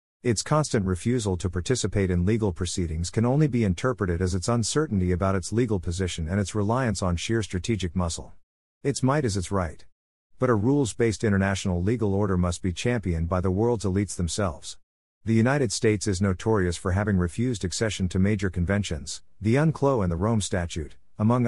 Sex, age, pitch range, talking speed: male, 50-69, 90-115 Hz, 180 wpm